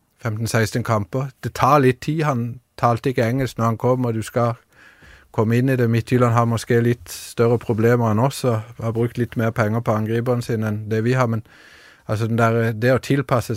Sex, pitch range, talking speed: male, 105-125 Hz, 210 wpm